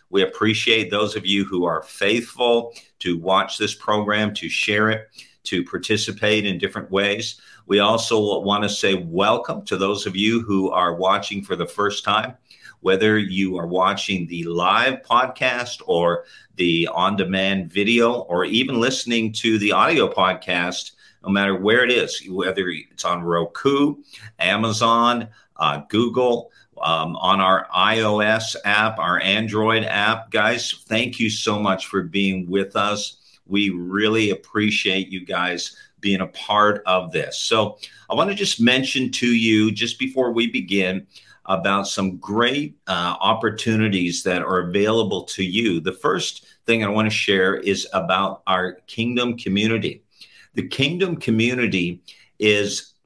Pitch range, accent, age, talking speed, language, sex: 95-115 Hz, American, 50-69, 150 wpm, English, male